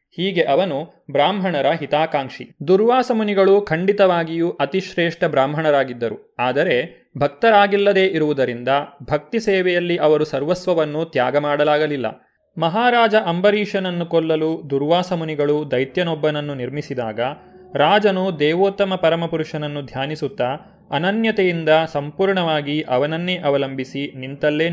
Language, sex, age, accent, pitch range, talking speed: Kannada, male, 30-49, native, 145-190 Hz, 75 wpm